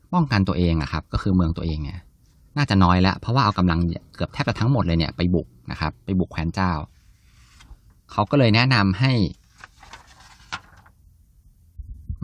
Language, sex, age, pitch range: Thai, male, 20-39, 85-105 Hz